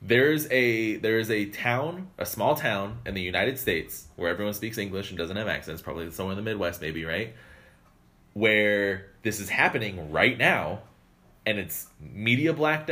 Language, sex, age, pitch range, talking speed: English, male, 20-39, 100-125 Hz, 170 wpm